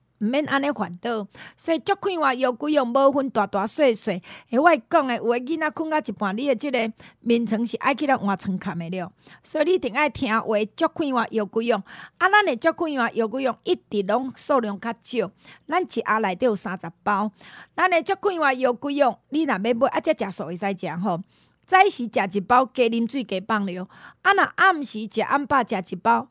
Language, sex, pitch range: Chinese, female, 205-280 Hz